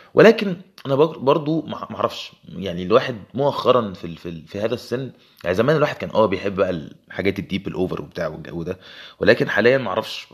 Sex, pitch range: male, 100-125 Hz